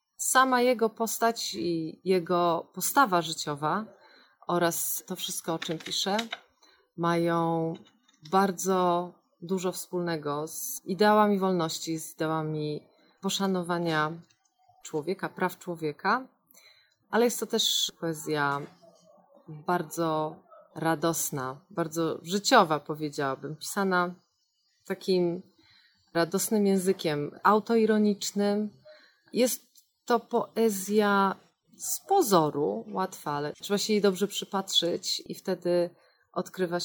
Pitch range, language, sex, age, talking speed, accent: 165-205 Hz, Polish, female, 30-49, 95 wpm, native